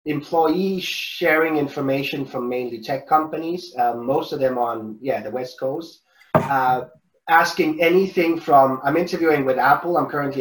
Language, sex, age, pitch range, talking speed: English, male, 30-49, 125-165 Hz, 150 wpm